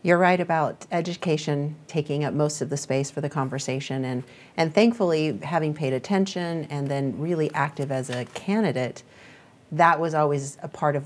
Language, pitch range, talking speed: English, 140-175 Hz, 175 wpm